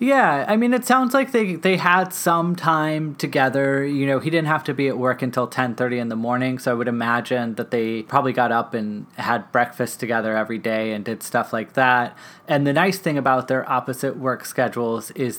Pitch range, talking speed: 115-150 Hz, 220 wpm